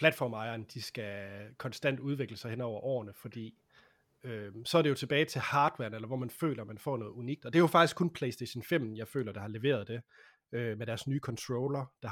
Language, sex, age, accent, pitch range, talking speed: Danish, male, 30-49, native, 115-145 Hz, 230 wpm